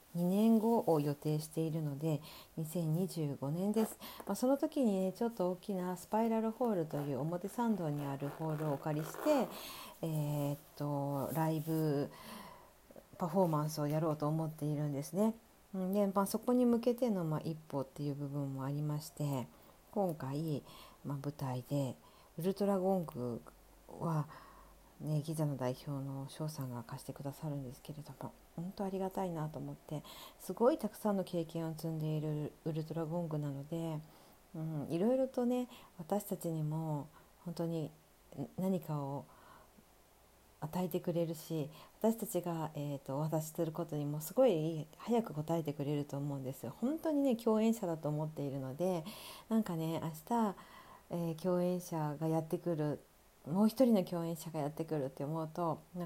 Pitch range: 145-185 Hz